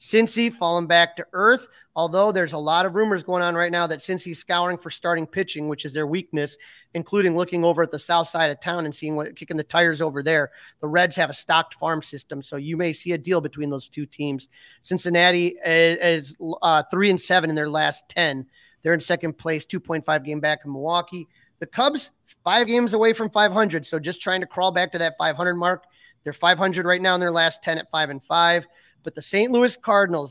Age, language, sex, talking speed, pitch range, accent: 30-49, English, male, 225 wpm, 160-190 Hz, American